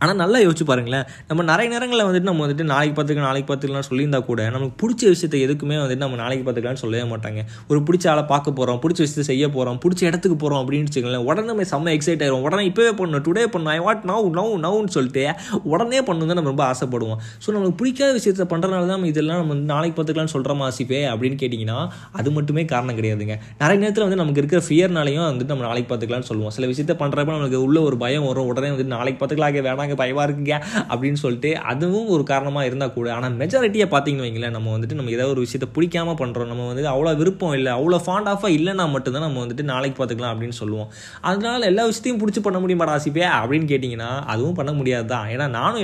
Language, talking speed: Tamil, 200 wpm